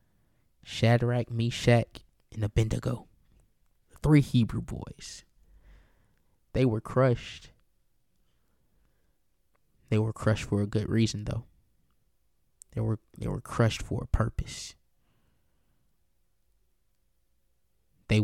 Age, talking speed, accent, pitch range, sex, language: 20-39, 85 wpm, American, 100-115 Hz, male, English